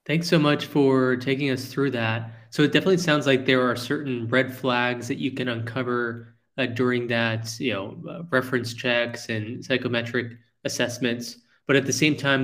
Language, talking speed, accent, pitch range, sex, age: English, 185 wpm, American, 115-130 Hz, male, 20-39